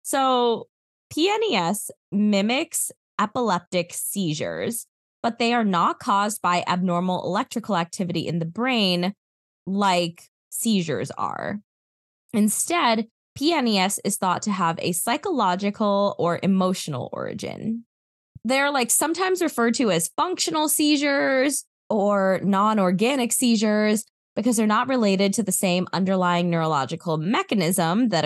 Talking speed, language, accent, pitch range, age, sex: 115 wpm, English, American, 175-240 Hz, 20-39, female